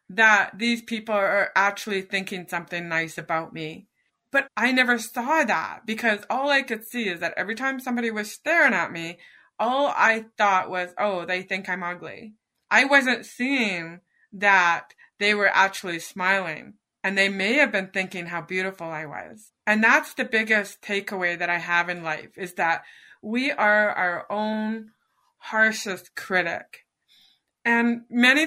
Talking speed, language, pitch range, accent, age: 160 wpm, English, 185-230 Hz, American, 20-39